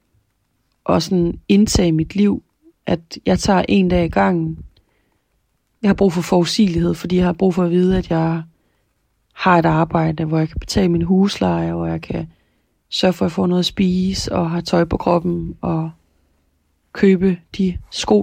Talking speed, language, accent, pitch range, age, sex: 180 wpm, Danish, native, 160-185 Hz, 30-49, female